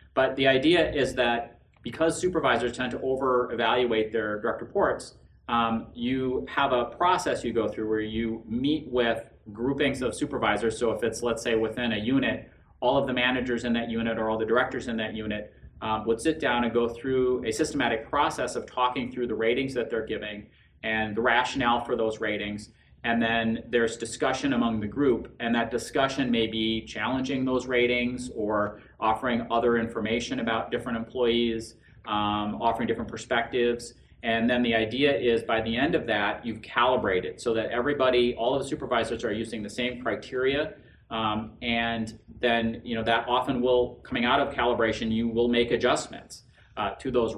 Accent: American